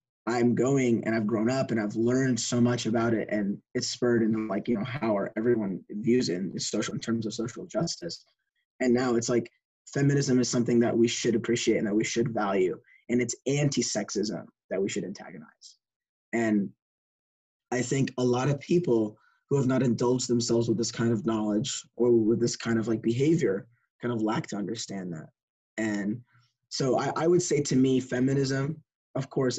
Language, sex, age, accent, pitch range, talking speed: English, male, 20-39, American, 115-125 Hz, 195 wpm